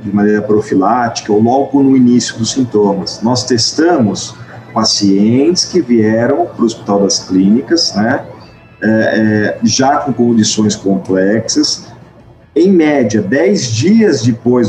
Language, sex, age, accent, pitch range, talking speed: Portuguese, male, 40-59, Brazilian, 110-140 Hz, 125 wpm